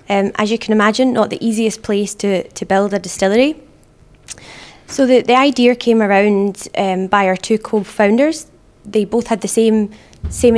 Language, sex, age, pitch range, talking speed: Dutch, female, 20-39, 195-235 Hz, 175 wpm